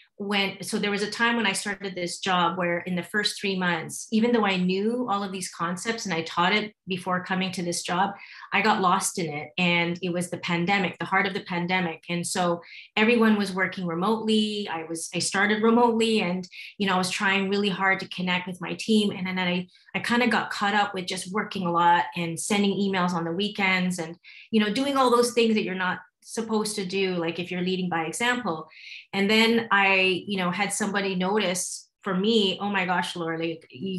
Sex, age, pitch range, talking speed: female, 30-49, 175-200 Hz, 225 wpm